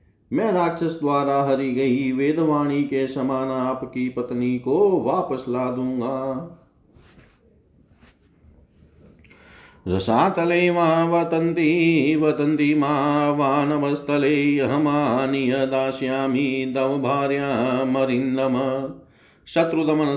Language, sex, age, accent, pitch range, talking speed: Hindi, male, 50-69, native, 130-155 Hz, 70 wpm